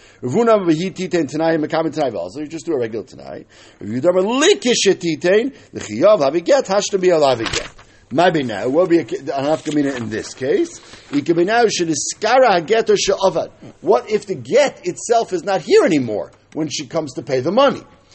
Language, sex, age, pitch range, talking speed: English, male, 50-69, 160-230 Hz, 210 wpm